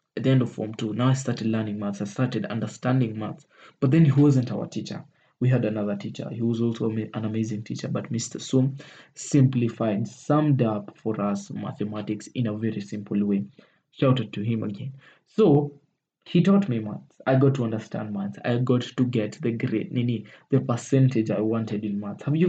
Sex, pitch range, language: male, 110-140 Hz, English